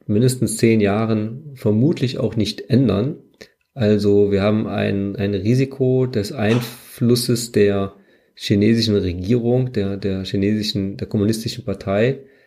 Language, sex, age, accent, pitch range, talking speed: German, male, 40-59, German, 100-125 Hz, 115 wpm